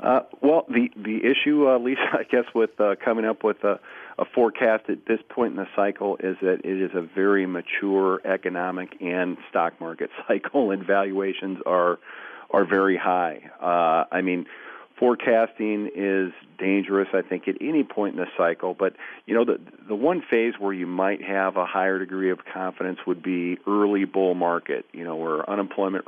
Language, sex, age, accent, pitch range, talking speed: English, male, 40-59, American, 90-105 Hz, 185 wpm